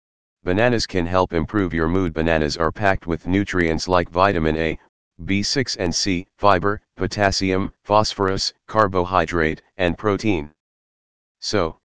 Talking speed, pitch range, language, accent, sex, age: 120 wpm, 80-95 Hz, English, American, male, 40-59